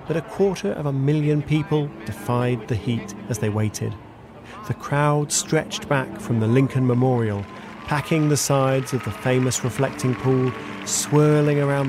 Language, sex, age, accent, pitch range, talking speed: English, male, 40-59, British, 110-140 Hz, 155 wpm